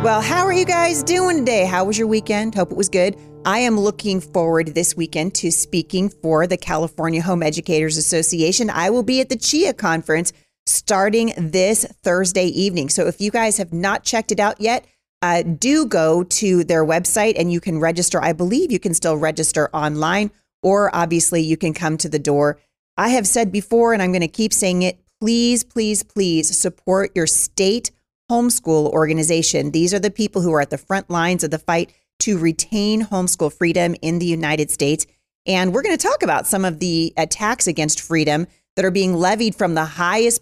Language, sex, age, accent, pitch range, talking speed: English, female, 30-49, American, 165-210 Hz, 200 wpm